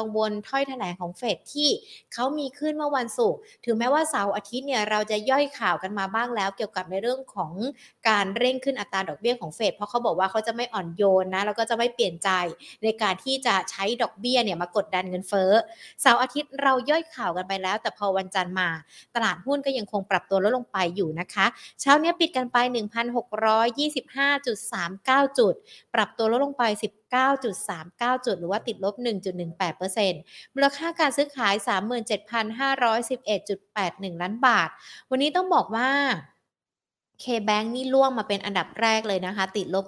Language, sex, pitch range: Thai, female, 190-250 Hz